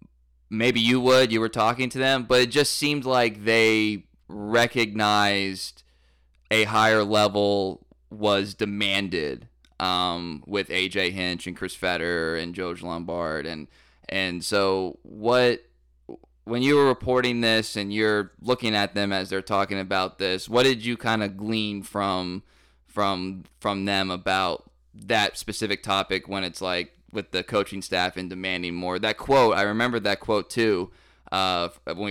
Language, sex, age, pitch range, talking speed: English, male, 20-39, 90-110 Hz, 155 wpm